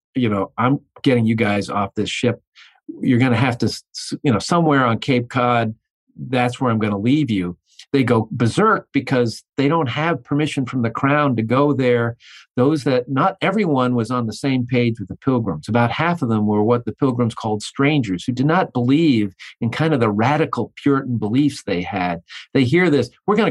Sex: male